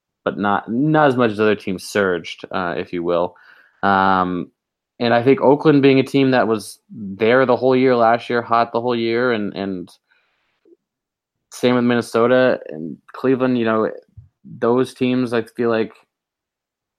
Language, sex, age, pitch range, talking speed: English, male, 20-39, 100-125 Hz, 165 wpm